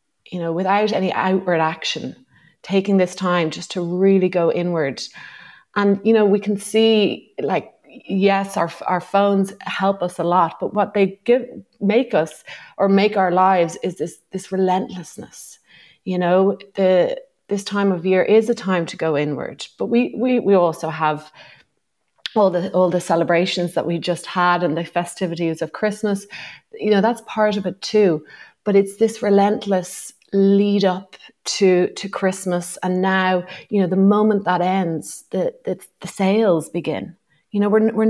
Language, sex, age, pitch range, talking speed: English, female, 30-49, 175-205 Hz, 175 wpm